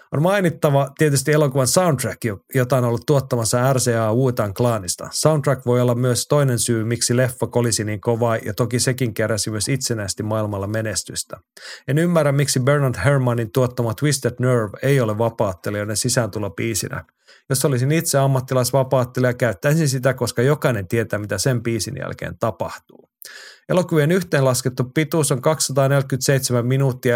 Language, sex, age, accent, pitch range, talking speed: Finnish, male, 30-49, native, 115-140 Hz, 140 wpm